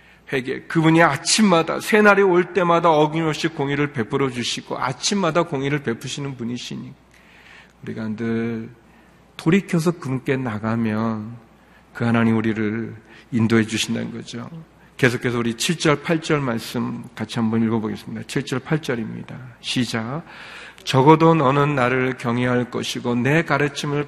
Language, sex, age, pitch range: Korean, male, 40-59, 115-150 Hz